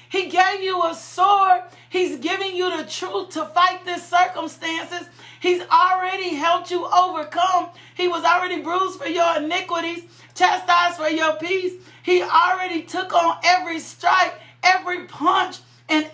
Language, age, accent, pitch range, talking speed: English, 40-59, American, 325-370 Hz, 145 wpm